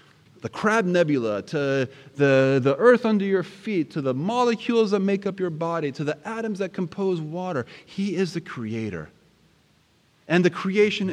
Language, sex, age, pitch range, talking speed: English, male, 30-49, 110-145 Hz, 165 wpm